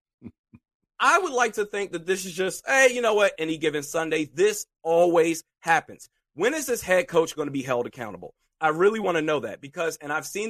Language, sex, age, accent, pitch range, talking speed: English, male, 30-49, American, 150-215 Hz, 225 wpm